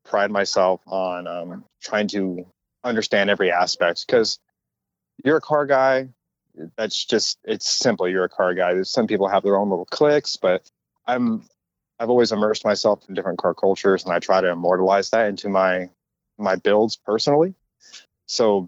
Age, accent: 30-49, American